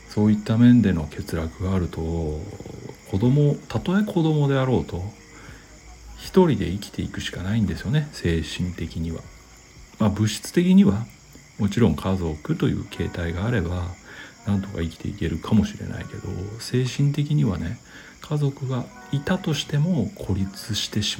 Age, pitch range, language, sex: 60-79, 85-120 Hz, Japanese, male